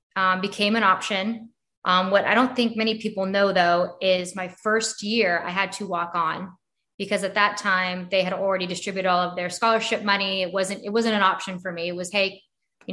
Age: 20-39